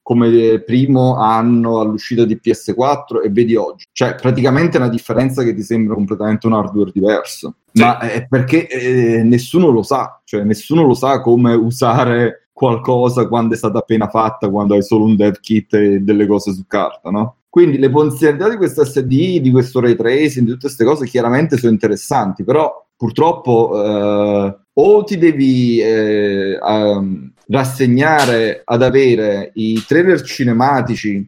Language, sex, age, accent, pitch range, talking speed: Italian, male, 30-49, native, 110-130 Hz, 155 wpm